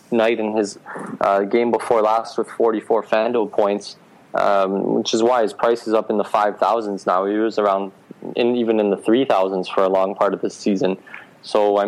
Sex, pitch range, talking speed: male, 105-115 Hz, 200 wpm